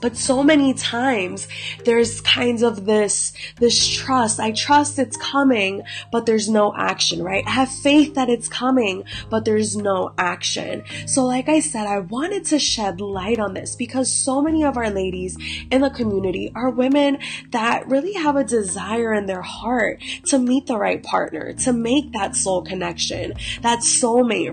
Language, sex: English, female